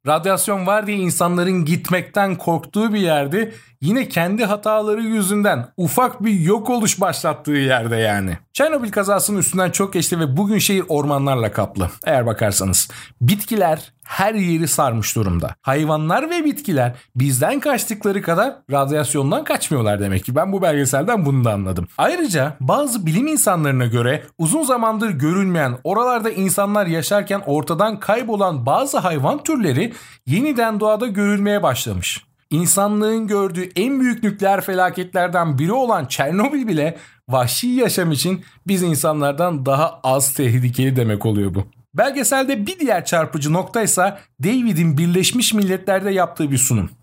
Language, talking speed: Turkish, 135 wpm